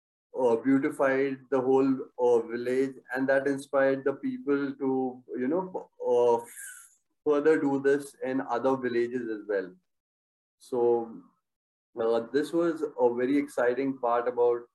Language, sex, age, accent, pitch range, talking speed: English, male, 30-49, Indian, 120-145 Hz, 130 wpm